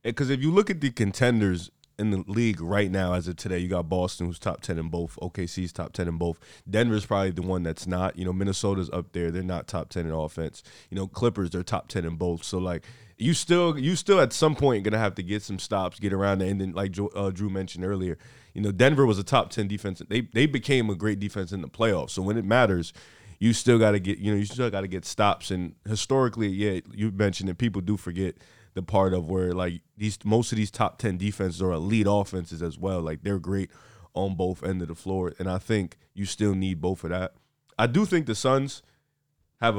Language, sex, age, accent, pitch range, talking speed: English, male, 30-49, American, 90-110 Hz, 245 wpm